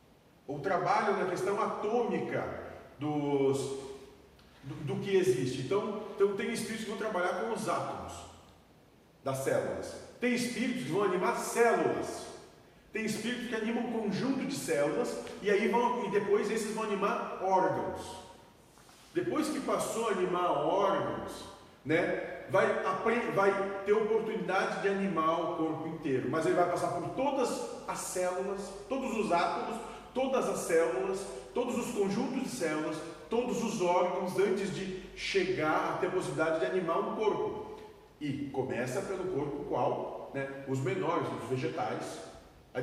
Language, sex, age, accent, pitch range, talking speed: Portuguese, male, 40-59, Brazilian, 160-225 Hz, 145 wpm